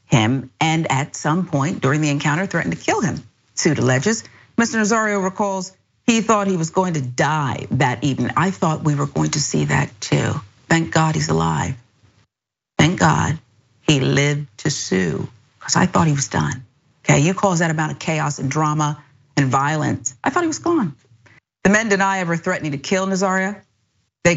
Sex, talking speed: female, 185 wpm